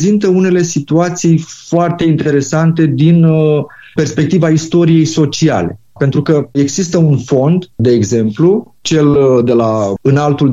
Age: 30-49